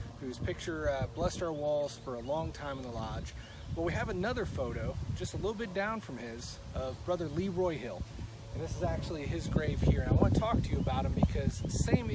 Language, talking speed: English, 235 wpm